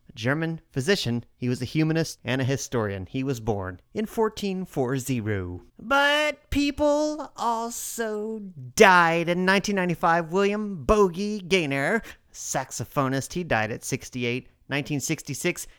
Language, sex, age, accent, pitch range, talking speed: English, male, 30-49, American, 130-205 Hz, 110 wpm